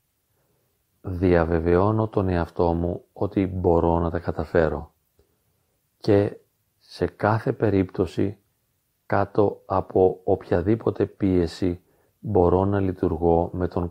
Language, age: Greek, 40-59